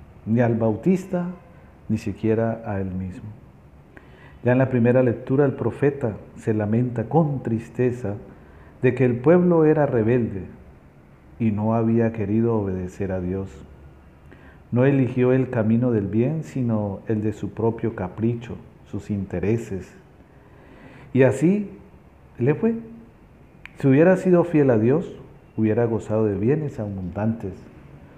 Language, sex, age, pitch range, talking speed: English, male, 50-69, 100-130 Hz, 130 wpm